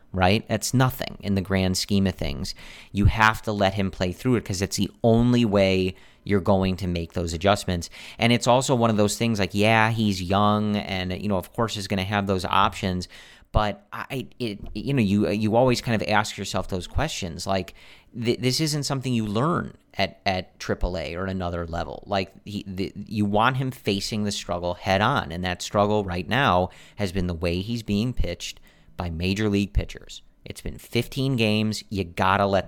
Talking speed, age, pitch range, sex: 200 wpm, 40-59, 95-110 Hz, male